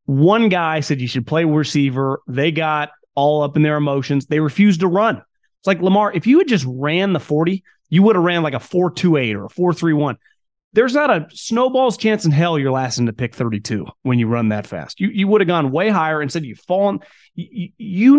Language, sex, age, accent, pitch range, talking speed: English, male, 30-49, American, 135-190 Hz, 245 wpm